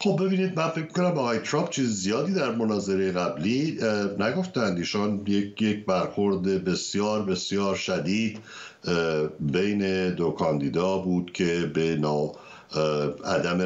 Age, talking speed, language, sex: 60-79, 110 wpm, Persian, male